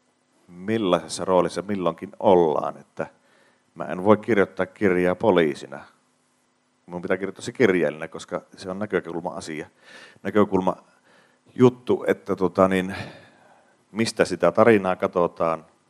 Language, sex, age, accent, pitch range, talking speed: Finnish, male, 40-59, native, 90-105 Hz, 115 wpm